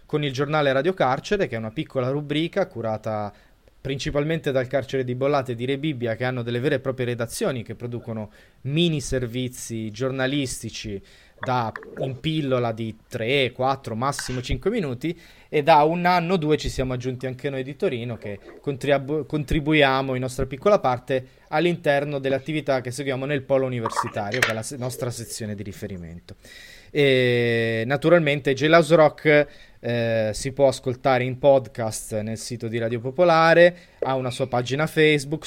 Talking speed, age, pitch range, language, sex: 165 wpm, 20-39, 120-150 Hz, Italian, male